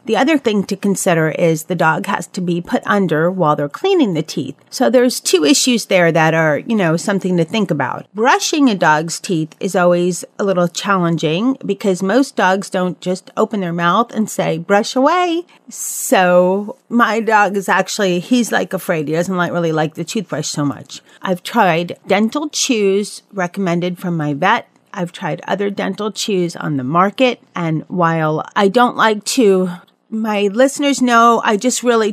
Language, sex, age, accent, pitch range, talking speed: English, female, 40-59, American, 180-235 Hz, 180 wpm